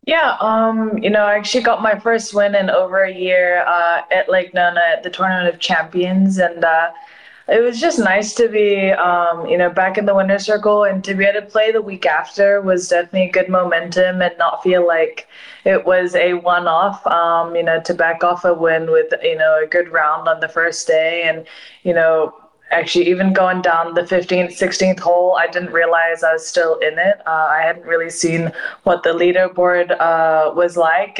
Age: 20-39